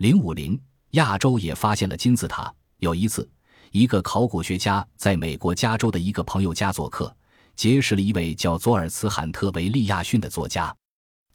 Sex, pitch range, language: male, 85-115 Hz, Chinese